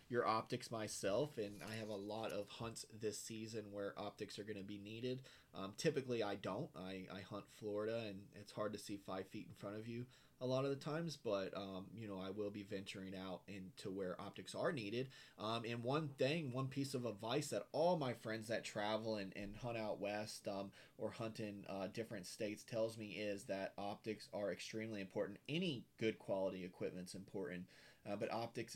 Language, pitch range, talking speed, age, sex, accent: English, 100-115 Hz, 210 wpm, 30-49, male, American